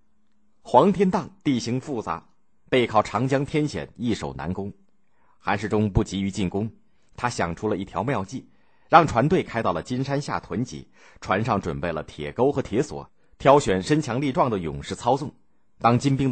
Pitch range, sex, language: 90-135 Hz, male, Chinese